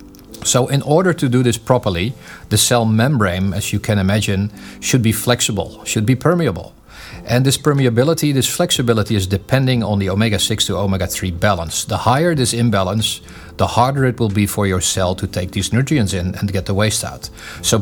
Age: 40-59